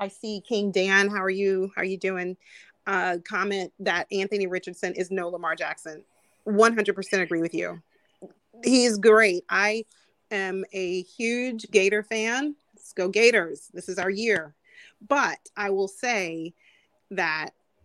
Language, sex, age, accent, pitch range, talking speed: English, female, 30-49, American, 190-220 Hz, 150 wpm